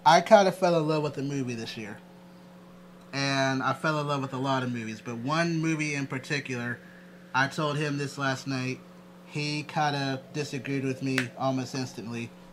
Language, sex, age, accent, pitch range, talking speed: English, male, 30-49, American, 125-165 Hz, 190 wpm